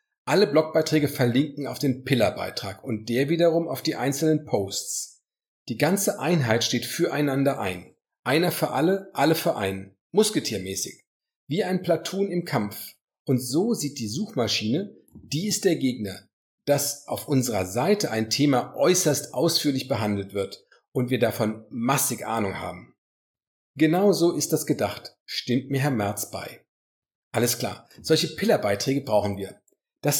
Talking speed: 145 wpm